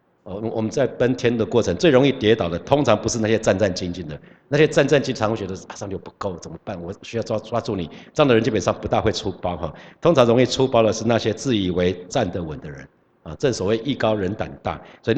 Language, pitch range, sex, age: Chinese, 95-125 Hz, male, 50-69